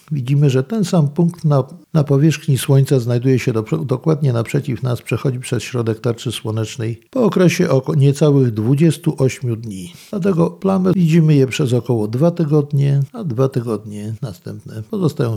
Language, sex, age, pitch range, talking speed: Polish, male, 50-69, 115-160 Hz, 150 wpm